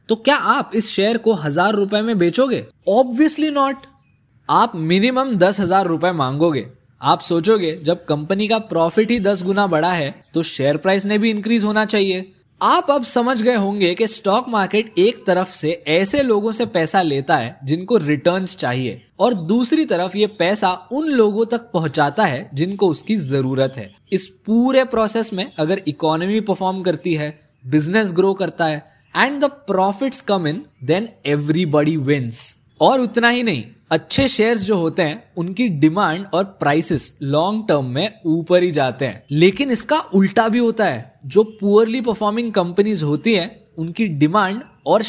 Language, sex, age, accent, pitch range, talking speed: Hindi, male, 20-39, native, 155-220 Hz, 170 wpm